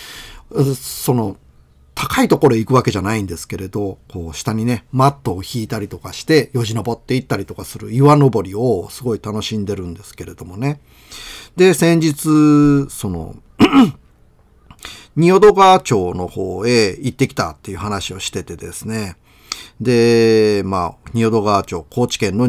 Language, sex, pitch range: Japanese, male, 95-130 Hz